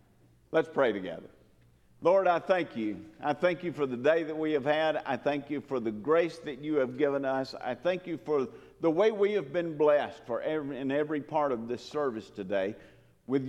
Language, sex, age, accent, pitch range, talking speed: English, male, 50-69, American, 120-165 Hz, 215 wpm